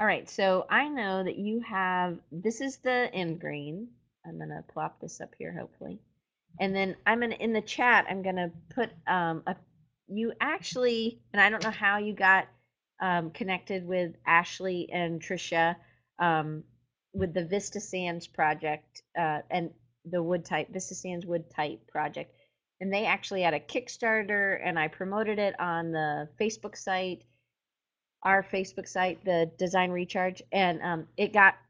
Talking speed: 165 wpm